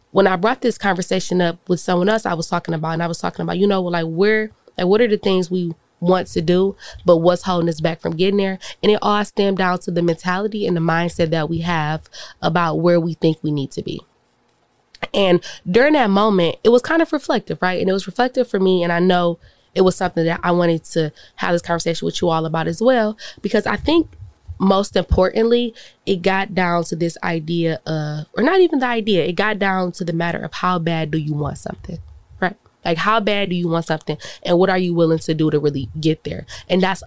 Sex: female